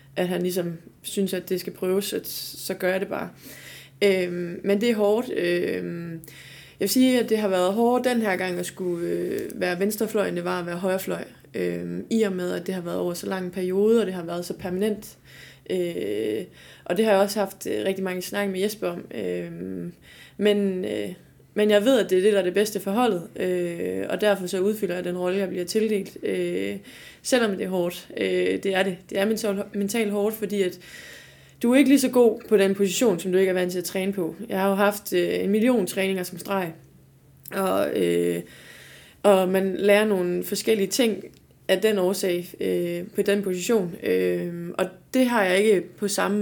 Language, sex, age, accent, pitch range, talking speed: Danish, female, 20-39, native, 175-205 Hz, 210 wpm